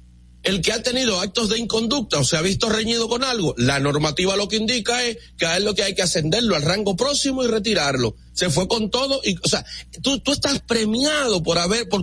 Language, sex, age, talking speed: Spanish, male, 40-59, 235 wpm